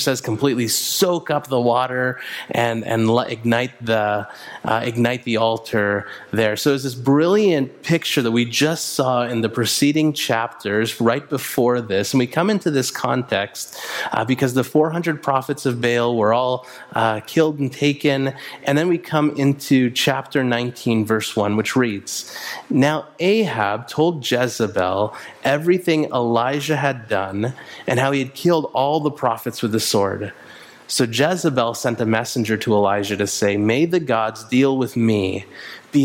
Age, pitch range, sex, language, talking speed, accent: 30-49, 115-145 Hz, male, English, 165 wpm, American